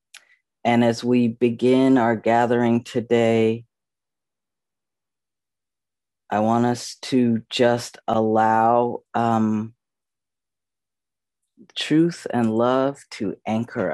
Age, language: 50-69, English